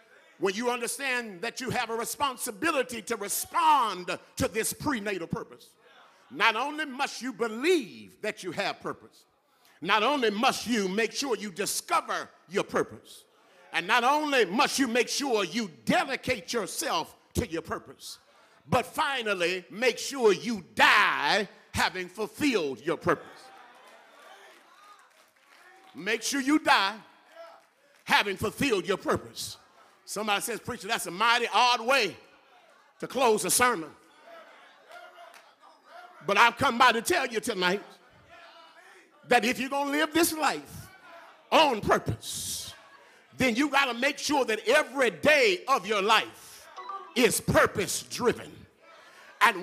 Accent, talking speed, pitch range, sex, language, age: American, 130 wpm, 220-280 Hz, male, English, 50-69